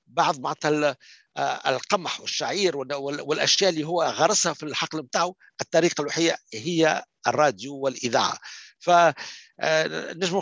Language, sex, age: Arabic, male, 60-79